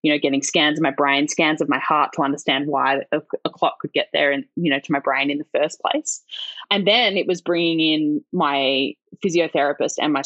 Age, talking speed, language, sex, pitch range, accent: 10-29, 235 wpm, English, female, 150-180 Hz, Australian